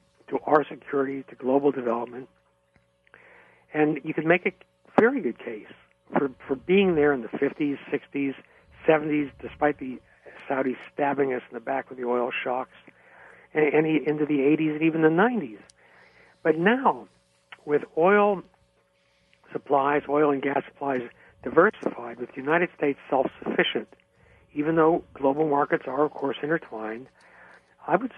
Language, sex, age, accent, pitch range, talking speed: English, male, 60-79, American, 130-160 Hz, 145 wpm